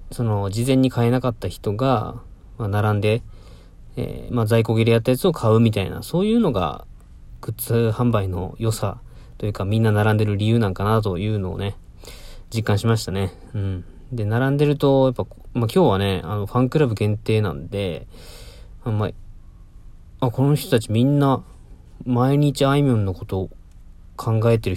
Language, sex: Japanese, male